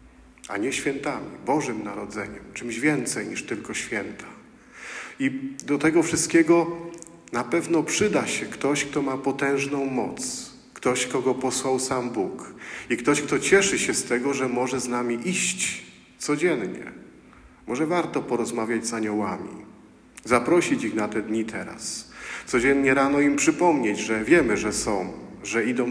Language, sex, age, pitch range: Polish, male, 50-69, 120-145 Hz